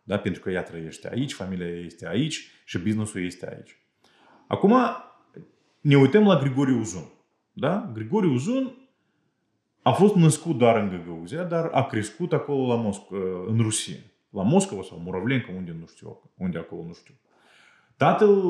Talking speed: 150 wpm